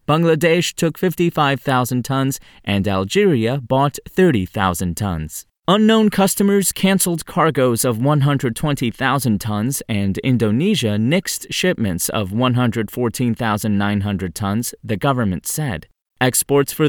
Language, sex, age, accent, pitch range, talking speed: English, male, 30-49, American, 110-150 Hz, 100 wpm